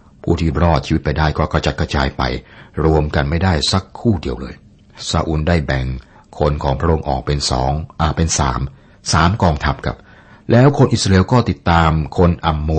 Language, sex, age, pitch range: Thai, male, 60-79, 70-95 Hz